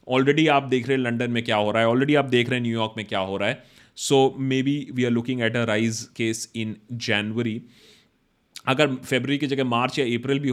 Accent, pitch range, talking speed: native, 120-155 Hz, 240 wpm